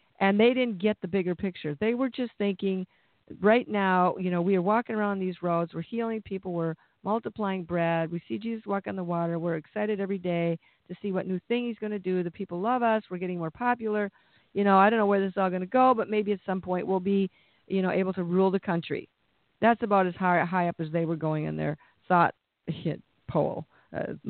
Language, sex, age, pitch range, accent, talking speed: English, female, 50-69, 170-215 Hz, American, 235 wpm